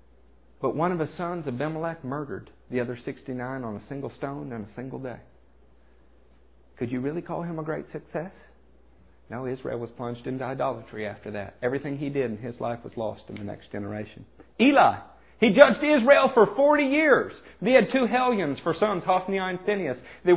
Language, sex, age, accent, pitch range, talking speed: English, male, 50-69, American, 110-180 Hz, 185 wpm